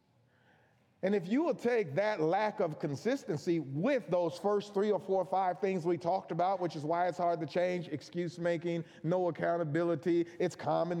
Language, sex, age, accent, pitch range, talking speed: English, male, 40-59, American, 145-200 Hz, 185 wpm